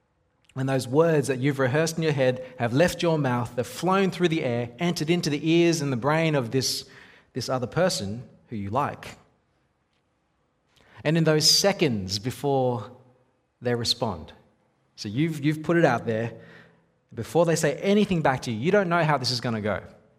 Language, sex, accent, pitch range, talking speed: English, male, Australian, 120-150 Hz, 190 wpm